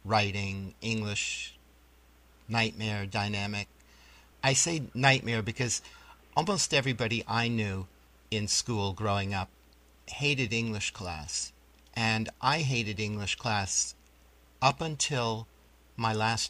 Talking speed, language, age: 100 wpm, English, 50-69